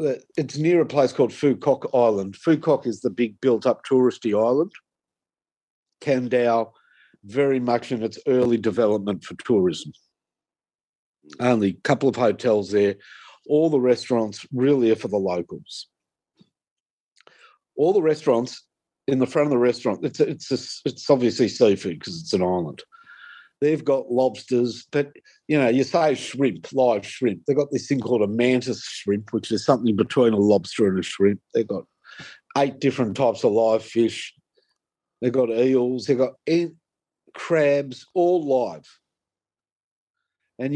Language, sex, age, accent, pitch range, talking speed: English, male, 50-69, Australian, 115-145 Hz, 150 wpm